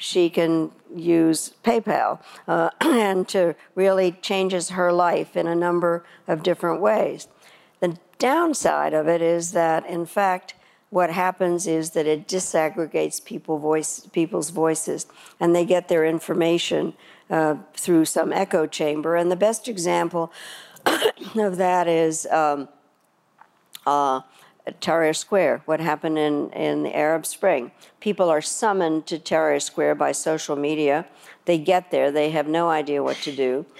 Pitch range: 155-180 Hz